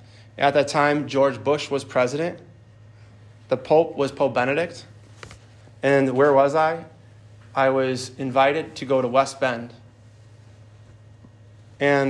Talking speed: 125 wpm